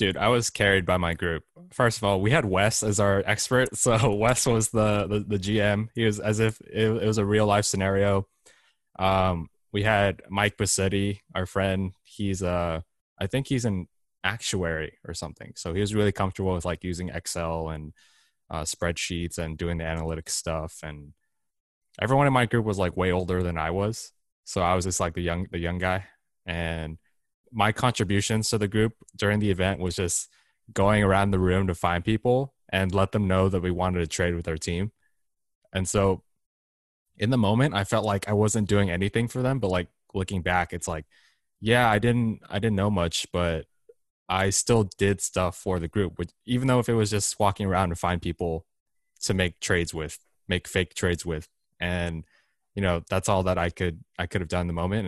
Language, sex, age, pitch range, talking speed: English, male, 20-39, 85-105 Hz, 205 wpm